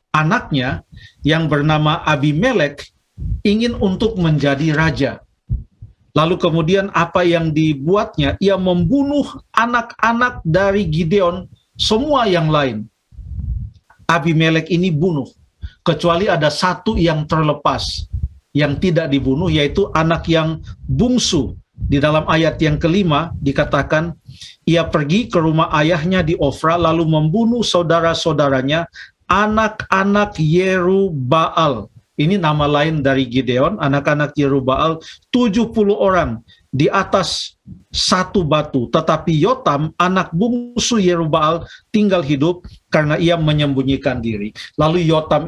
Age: 50-69